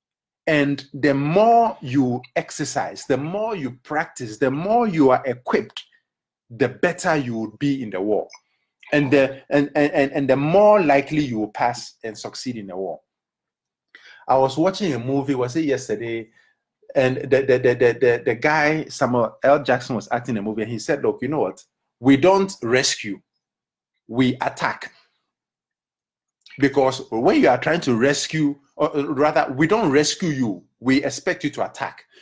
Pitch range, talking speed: 130-165 Hz, 160 wpm